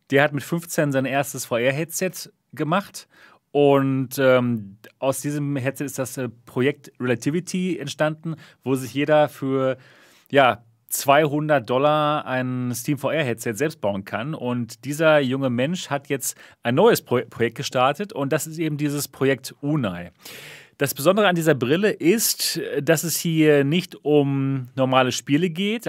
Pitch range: 135-165 Hz